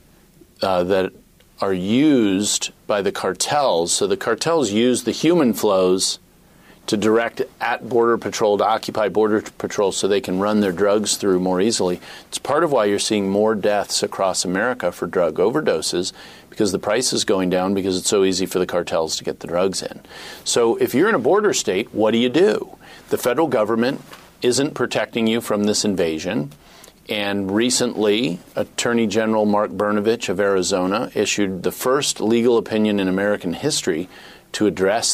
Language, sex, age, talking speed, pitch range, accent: English, male, 40-59, 170 wpm, 95-115 Hz, American